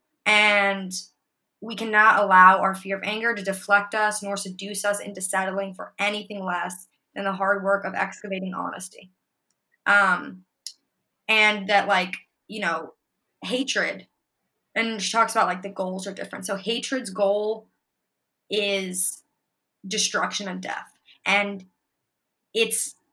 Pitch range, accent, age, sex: 190-220 Hz, American, 20-39, female